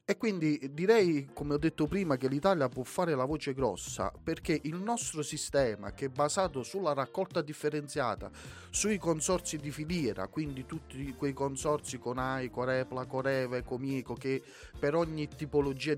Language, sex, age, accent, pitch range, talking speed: Italian, male, 30-49, native, 135-165 Hz, 150 wpm